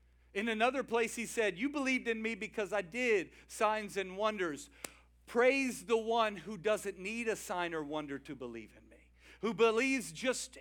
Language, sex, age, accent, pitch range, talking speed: English, male, 50-69, American, 160-215 Hz, 180 wpm